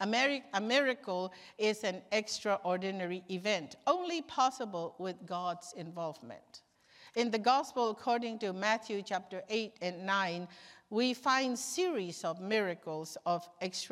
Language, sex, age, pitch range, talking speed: English, female, 50-69, 180-225 Hz, 115 wpm